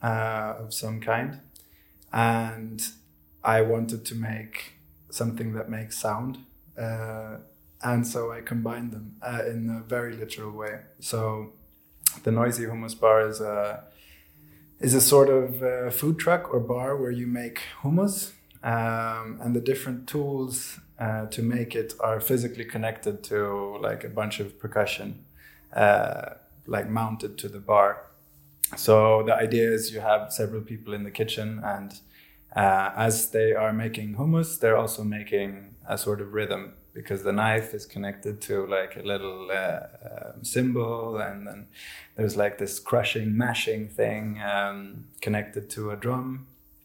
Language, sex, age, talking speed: English, male, 20-39, 150 wpm